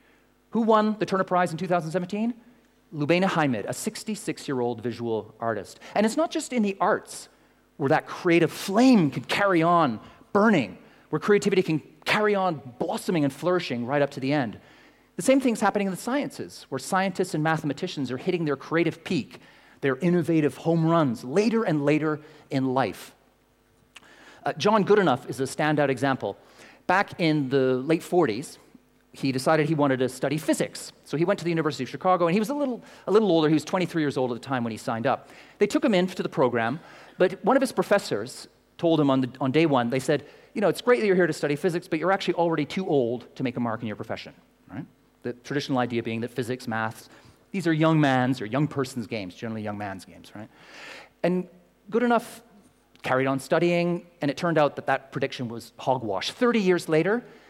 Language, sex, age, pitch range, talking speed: English, male, 40-59, 135-190 Hz, 205 wpm